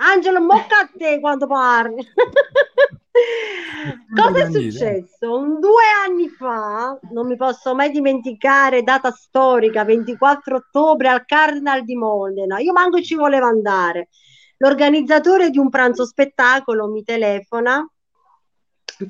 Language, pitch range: Italian, 200-280 Hz